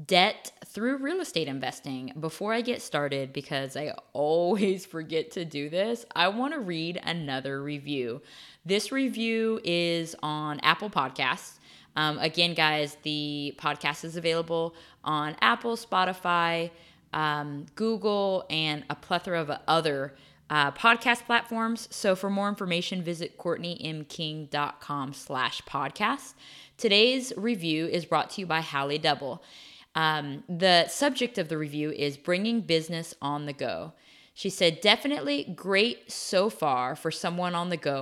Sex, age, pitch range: female, 20-39, 150-205 Hz